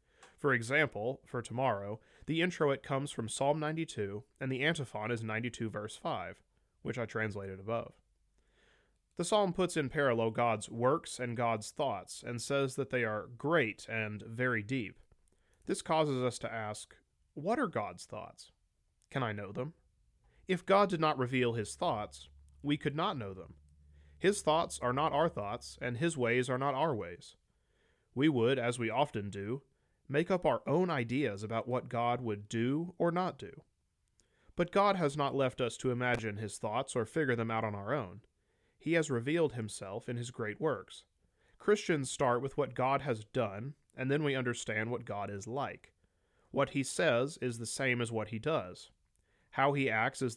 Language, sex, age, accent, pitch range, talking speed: English, male, 30-49, American, 110-140 Hz, 180 wpm